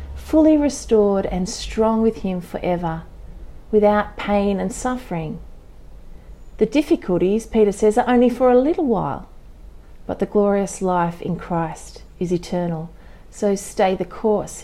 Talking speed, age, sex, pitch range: 135 wpm, 40-59, female, 180-235 Hz